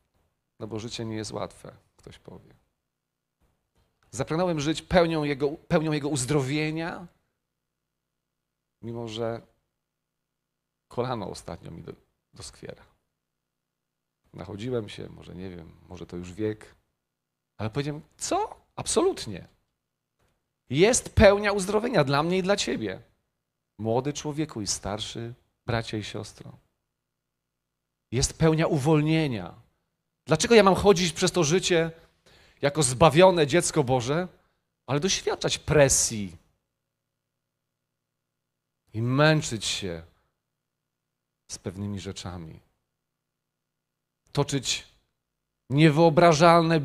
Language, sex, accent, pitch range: Polish, male, native, 105-160 Hz